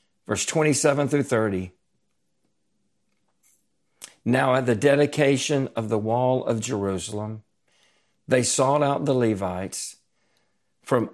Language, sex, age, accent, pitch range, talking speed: English, male, 50-69, American, 105-140 Hz, 100 wpm